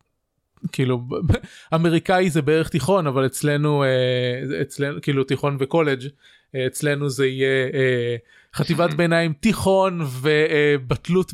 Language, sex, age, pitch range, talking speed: Hebrew, male, 20-39, 140-190 Hz, 95 wpm